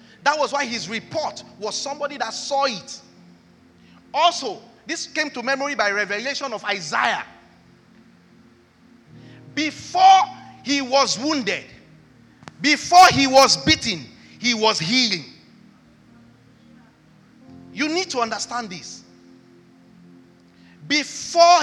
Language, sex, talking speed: English, male, 100 wpm